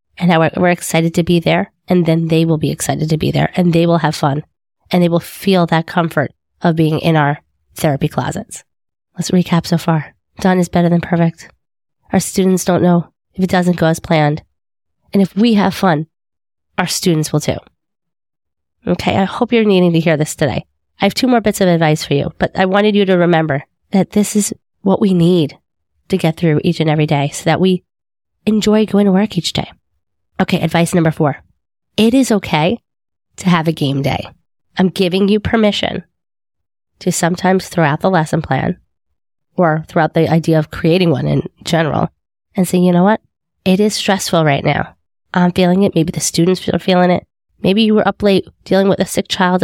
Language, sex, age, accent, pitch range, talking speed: English, female, 20-39, American, 155-190 Hz, 200 wpm